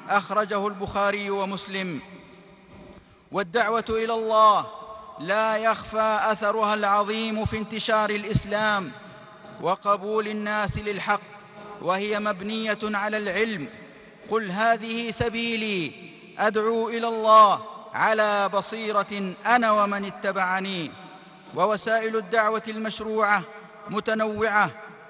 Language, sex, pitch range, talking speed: Arabic, male, 205-225 Hz, 85 wpm